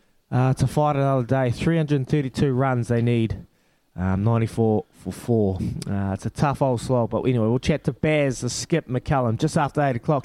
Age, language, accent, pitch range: 20-39, English, Australian, 105-140 Hz